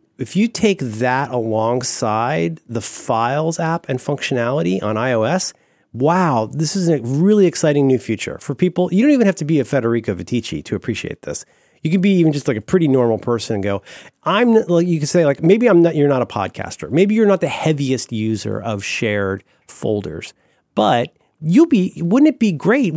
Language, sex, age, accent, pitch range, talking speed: English, male, 30-49, American, 110-170 Hz, 195 wpm